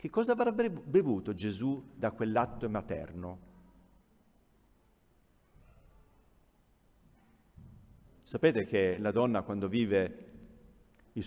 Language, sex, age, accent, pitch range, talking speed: Italian, male, 50-69, native, 105-150 Hz, 80 wpm